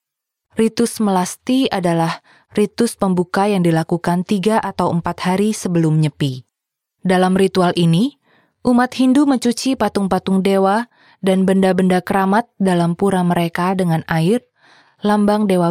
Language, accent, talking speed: English, Indonesian, 120 wpm